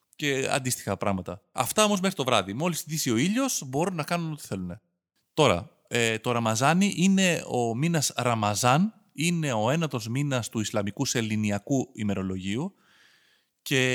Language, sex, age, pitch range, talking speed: Greek, male, 30-49, 115-180 Hz, 145 wpm